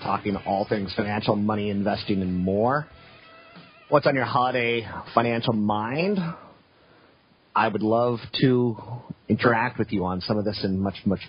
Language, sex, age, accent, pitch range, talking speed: English, male, 30-49, American, 105-135 Hz, 150 wpm